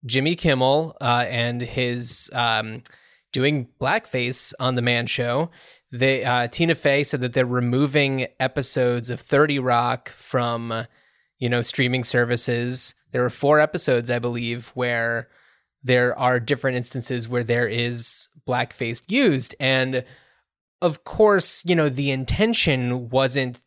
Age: 20-39